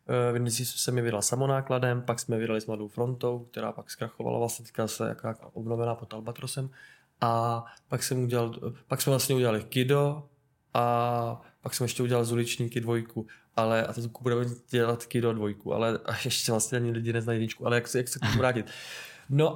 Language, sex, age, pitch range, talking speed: Czech, male, 20-39, 115-130 Hz, 180 wpm